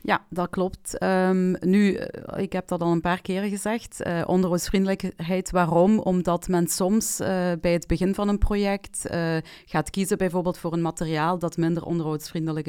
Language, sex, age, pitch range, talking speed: Dutch, female, 30-49, 165-185 Hz, 165 wpm